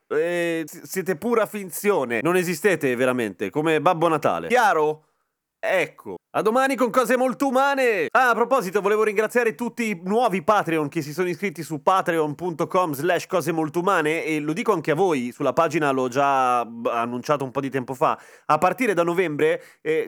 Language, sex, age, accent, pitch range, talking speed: Italian, male, 30-49, native, 135-180 Hz, 175 wpm